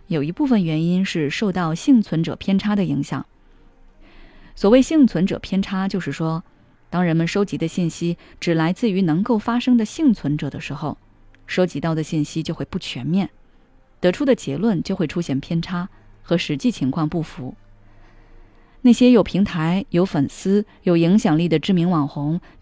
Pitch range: 150-195 Hz